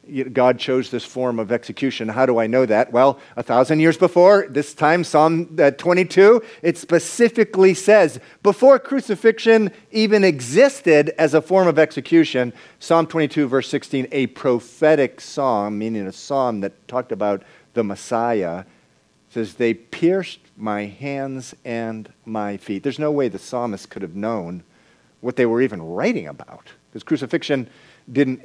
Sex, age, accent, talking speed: male, 50-69, American, 150 wpm